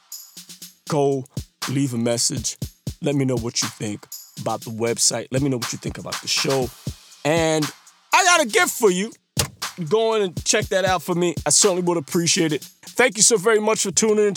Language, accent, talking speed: English, American, 210 wpm